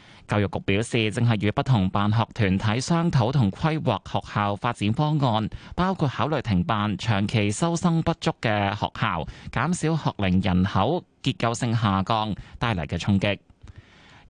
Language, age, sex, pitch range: Chinese, 20-39, male, 100-135 Hz